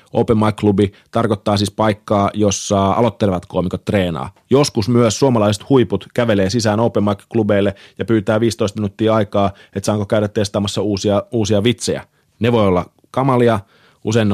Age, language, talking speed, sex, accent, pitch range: 30-49, Finnish, 145 wpm, male, native, 95-115 Hz